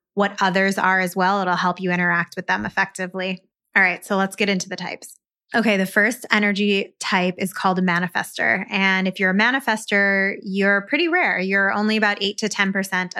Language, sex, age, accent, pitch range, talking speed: English, female, 20-39, American, 185-210 Hz, 195 wpm